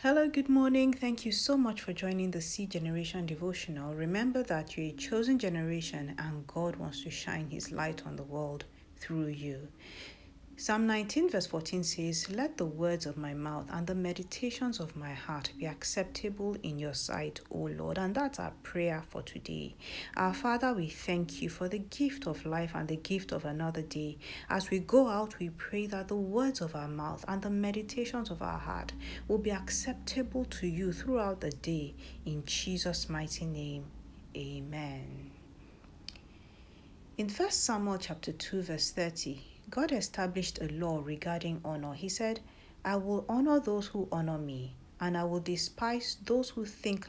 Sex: female